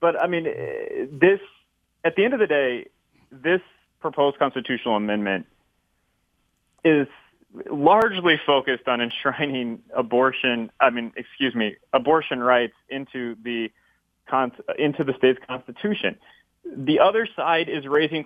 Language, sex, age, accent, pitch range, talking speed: English, male, 30-49, American, 130-185 Hz, 120 wpm